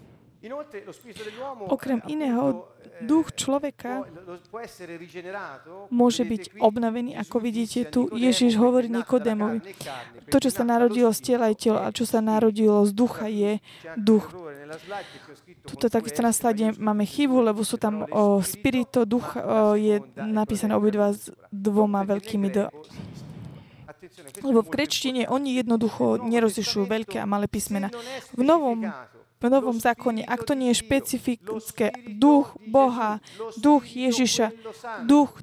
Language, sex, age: Slovak, female, 20-39